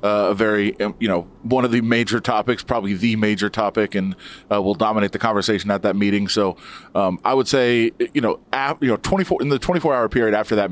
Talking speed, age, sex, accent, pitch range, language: 220 wpm, 30-49, male, American, 105-120 Hz, English